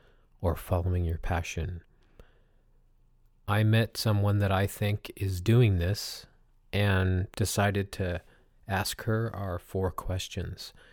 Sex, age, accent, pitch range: male, 40-59, American, 90-110 Hz